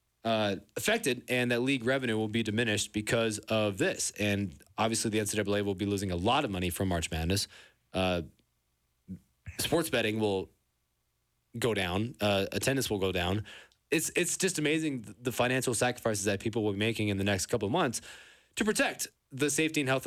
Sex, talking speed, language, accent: male, 180 wpm, English, American